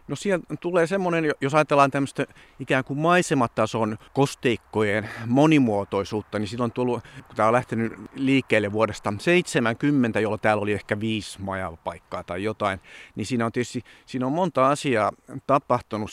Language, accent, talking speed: Finnish, native, 150 wpm